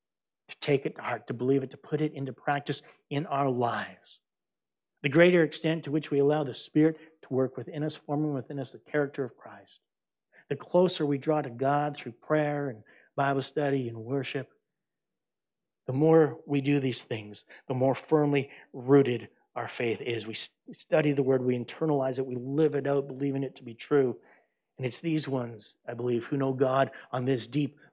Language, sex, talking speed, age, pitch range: English, male, 195 wpm, 50-69, 120-145 Hz